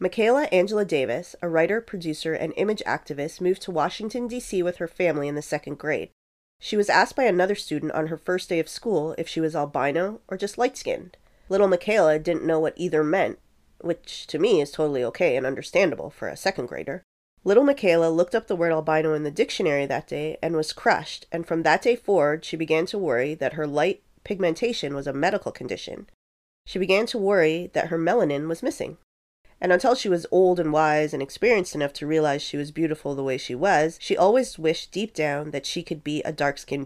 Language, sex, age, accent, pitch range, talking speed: English, female, 30-49, American, 150-185 Hz, 210 wpm